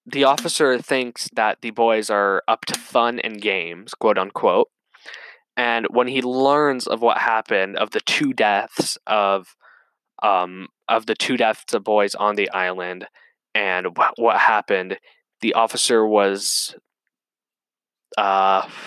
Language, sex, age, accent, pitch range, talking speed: English, male, 10-29, American, 100-170 Hz, 135 wpm